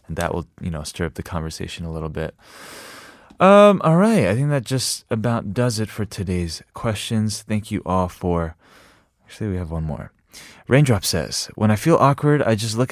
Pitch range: 85-115 Hz